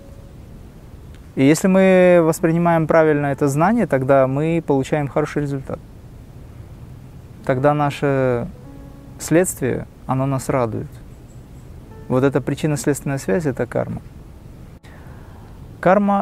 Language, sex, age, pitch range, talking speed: Russian, male, 20-39, 125-155 Hz, 95 wpm